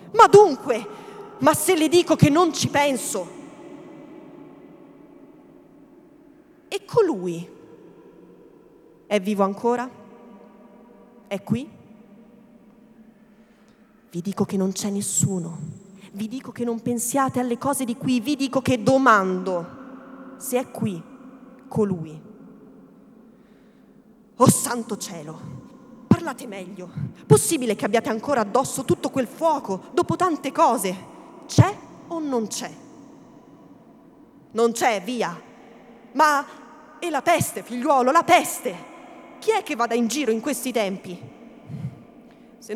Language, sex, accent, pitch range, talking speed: Italian, female, native, 220-295 Hz, 110 wpm